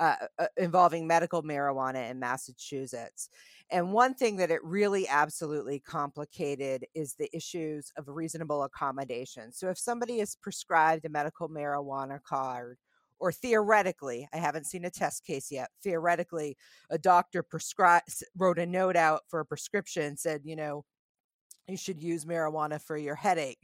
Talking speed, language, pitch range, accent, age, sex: 150 wpm, English, 140-170 Hz, American, 40-59, female